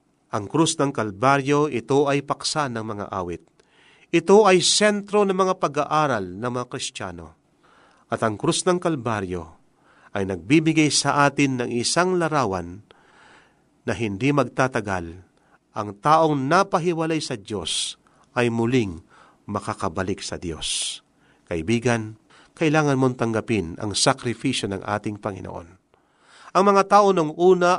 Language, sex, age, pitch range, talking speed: Filipino, male, 40-59, 110-165 Hz, 125 wpm